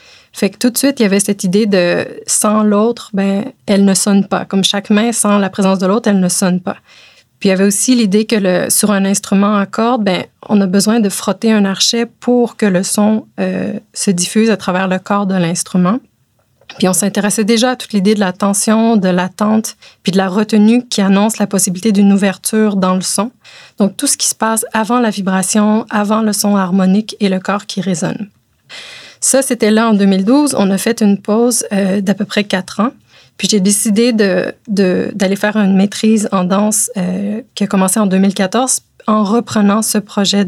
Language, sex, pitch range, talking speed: French, female, 195-220 Hz, 215 wpm